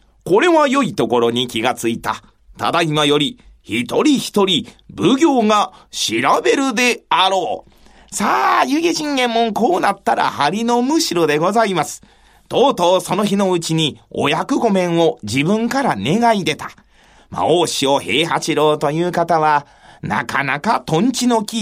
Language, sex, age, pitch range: Japanese, male, 40-59, 150-235 Hz